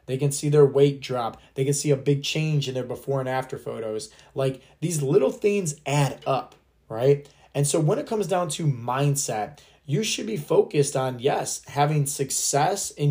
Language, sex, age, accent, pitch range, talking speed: English, male, 20-39, American, 130-150 Hz, 190 wpm